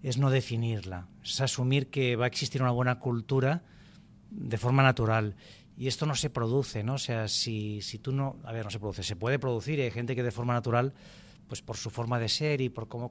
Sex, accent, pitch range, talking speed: male, Spanish, 115-140 Hz, 230 wpm